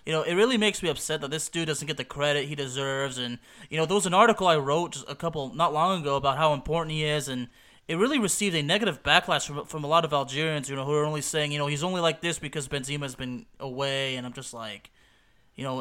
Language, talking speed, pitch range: English, 265 wpm, 140-175 Hz